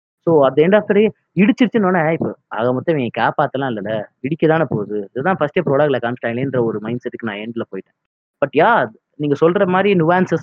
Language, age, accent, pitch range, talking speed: Tamil, 20-39, native, 130-175 Hz, 185 wpm